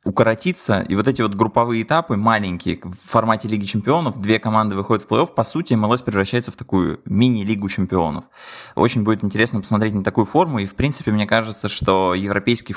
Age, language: 20-39, Russian